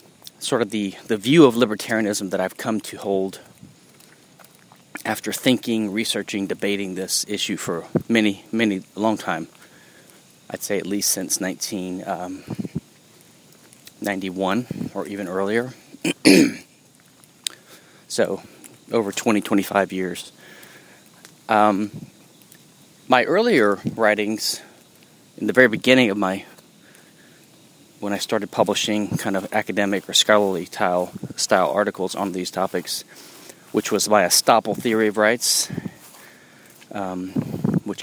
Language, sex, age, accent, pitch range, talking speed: English, male, 30-49, American, 95-110 Hz, 110 wpm